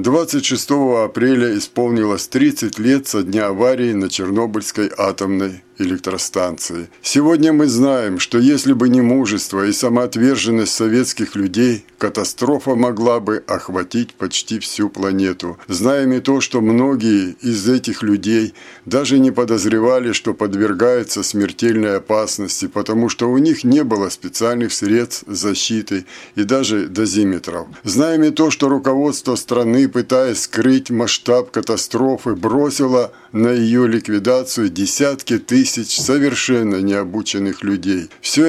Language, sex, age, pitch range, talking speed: Russian, male, 50-69, 105-130 Hz, 120 wpm